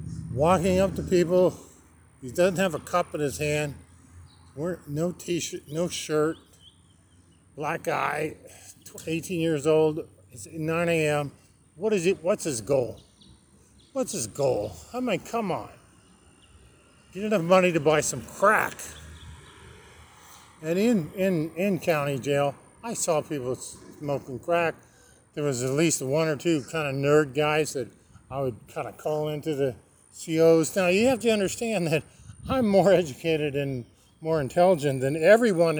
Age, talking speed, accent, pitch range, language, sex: 50-69, 150 wpm, American, 120-175 Hz, English, male